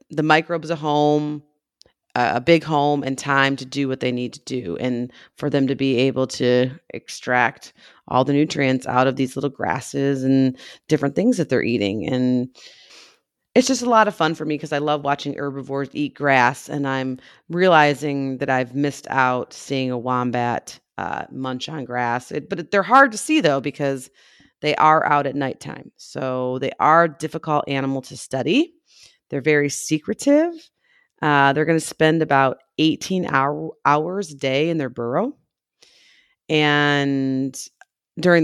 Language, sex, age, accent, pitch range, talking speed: English, female, 30-49, American, 135-170 Hz, 170 wpm